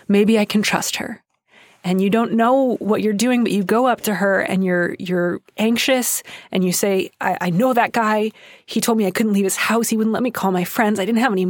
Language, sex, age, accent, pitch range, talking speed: English, female, 20-39, American, 185-225 Hz, 255 wpm